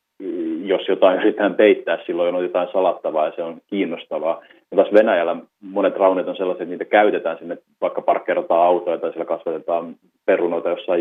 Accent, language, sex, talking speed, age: native, Finnish, male, 165 wpm, 30-49